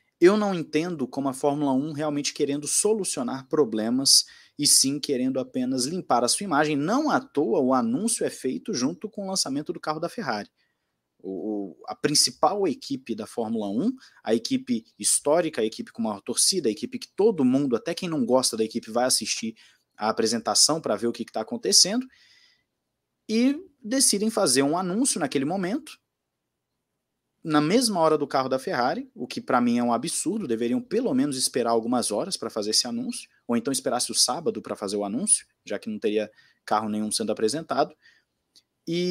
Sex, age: male, 20-39